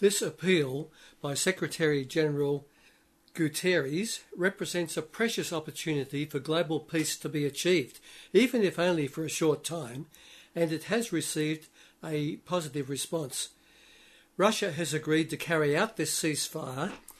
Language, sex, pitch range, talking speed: English, male, 150-175 Hz, 130 wpm